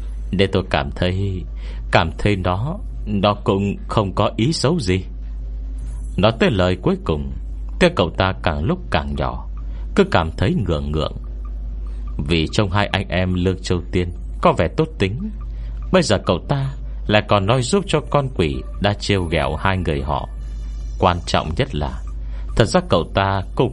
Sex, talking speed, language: male, 175 wpm, Vietnamese